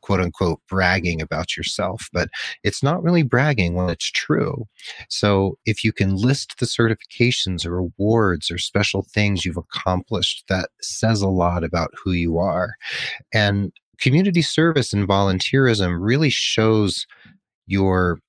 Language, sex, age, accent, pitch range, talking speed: English, male, 30-49, American, 85-105 Hz, 140 wpm